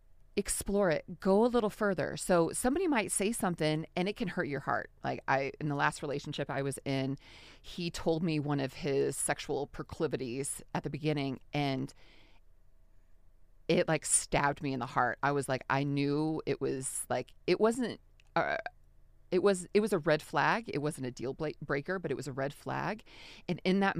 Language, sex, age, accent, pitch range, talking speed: English, female, 30-49, American, 140-205 Hz, 190 wpm